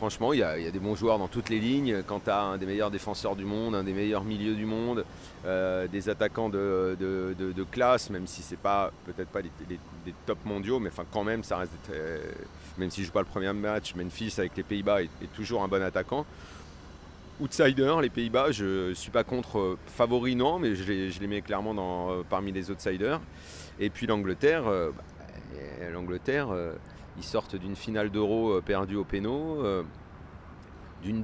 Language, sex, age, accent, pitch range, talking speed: French, male, 40-59, French, 95-115 Hz, 215 wpm